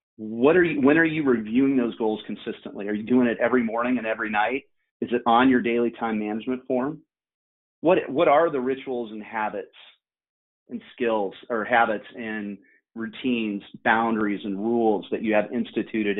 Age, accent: 30-49, American